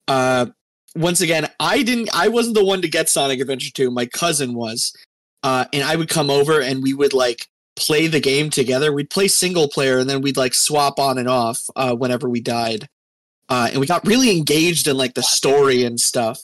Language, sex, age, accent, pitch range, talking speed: English, male, 20-39, American, 125-160 Hz, 215 wpm